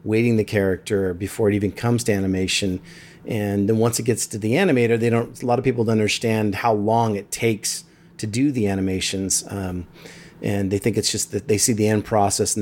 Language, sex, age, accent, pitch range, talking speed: English, male, 30-49, American, 100-125 Hz, 220 wpm